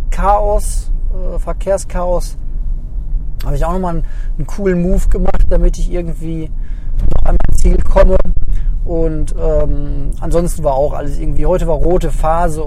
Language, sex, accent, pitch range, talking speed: German, male, German, 120-165 Hz, 145 wpm